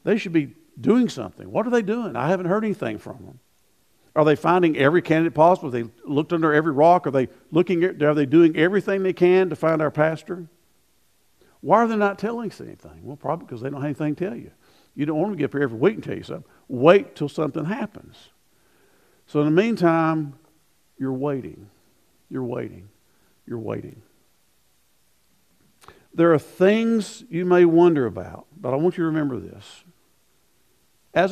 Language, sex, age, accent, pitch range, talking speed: English, male, 50-69, American, 140-180 Hz, 195 wpm